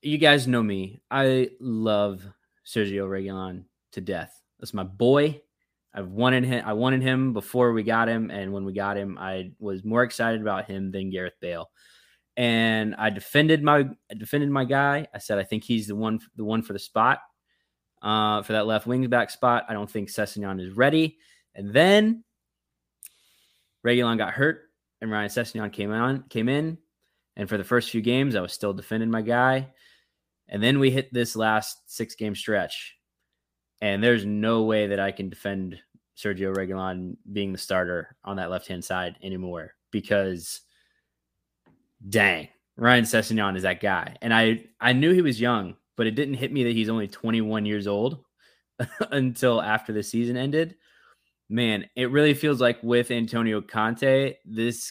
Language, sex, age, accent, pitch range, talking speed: English, male, 20-39, American, 100-120 Hz, 175 wpm